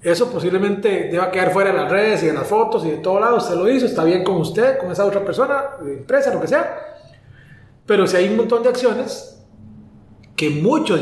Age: 30-49